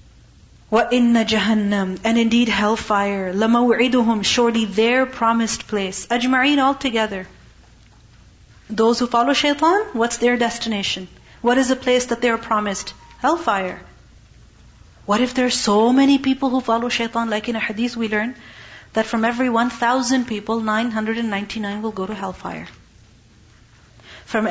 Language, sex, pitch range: English, female, 200-255 Hz